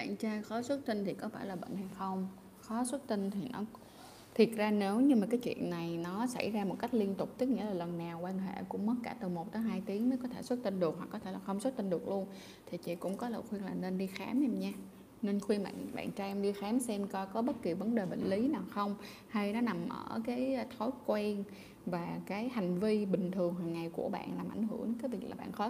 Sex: female